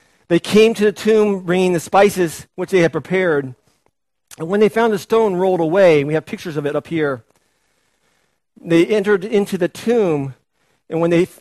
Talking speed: 190 wpm